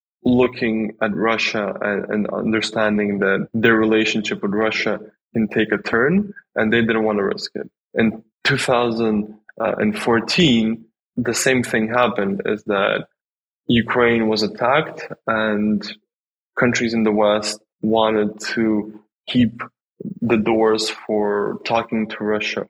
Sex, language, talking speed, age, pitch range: male, English, 120 wpm, 20-39, 105-120 Hz